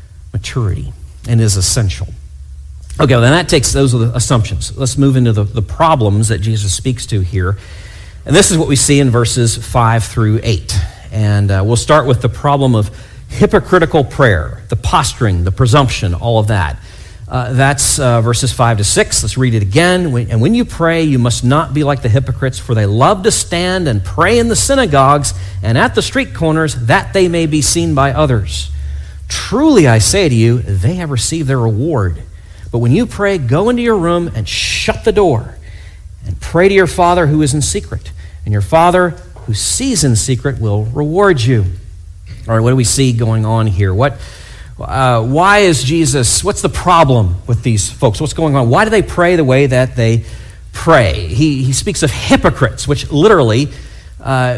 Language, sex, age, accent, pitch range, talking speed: English, male, 50-69, American, 105-145 Hz, 190 wpm